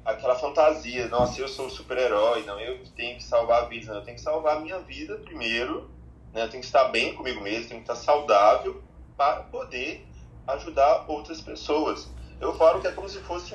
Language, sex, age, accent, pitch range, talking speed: Portuguese, male, 20-39, Brazilian, 110-155 Hz, 215 wpm